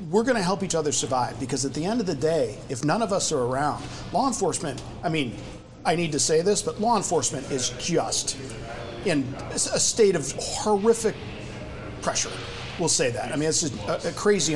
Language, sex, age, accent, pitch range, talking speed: English, male, 50-69, American, 130-175 Hz, 205 wpm